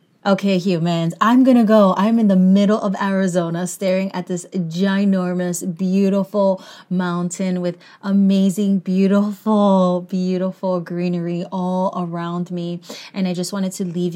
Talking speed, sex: 135 wpm, female